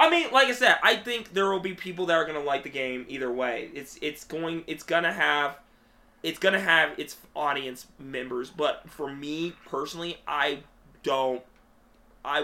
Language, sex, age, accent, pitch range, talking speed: English, male, 20-39, American, 130-170 Hz, 185 wpm